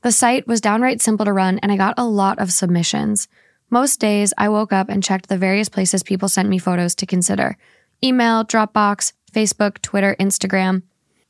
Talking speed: 185 wpm